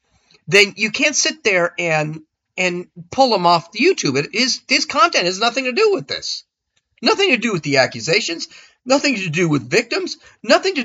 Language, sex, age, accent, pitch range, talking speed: English, male, 40-59, American, 205-315 Hz, 190 wpm